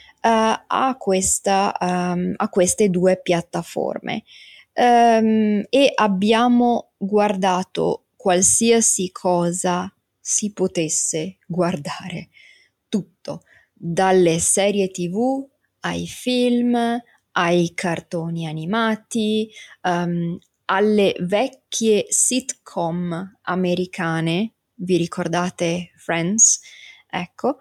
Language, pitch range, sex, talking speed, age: Italian, 175-220 Hz, female, 75 wpm, 20-39